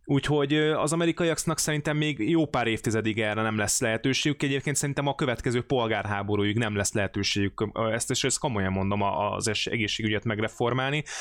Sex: male